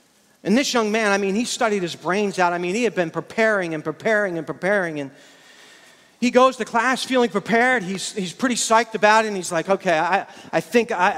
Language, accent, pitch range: English, American, 185-245 Hz